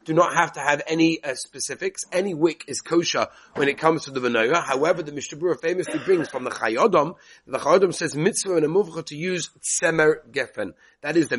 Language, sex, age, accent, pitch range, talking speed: English, male, 30-49, British, 140-180 Hz, 205 wpm